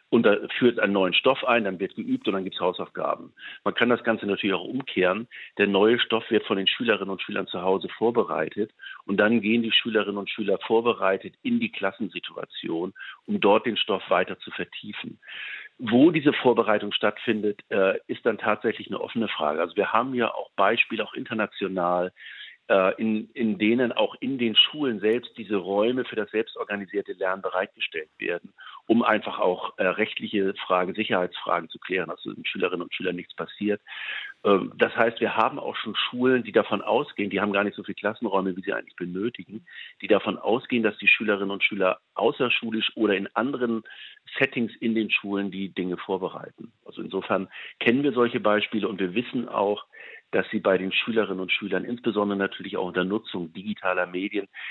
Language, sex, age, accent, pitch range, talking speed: German, male, 50-69, German, 95-125 Hz, 180 wpm